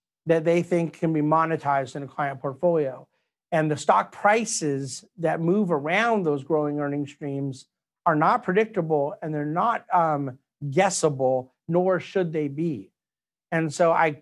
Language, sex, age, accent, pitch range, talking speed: English, male, 50-69, American, 140-170 Hz, 150 wpm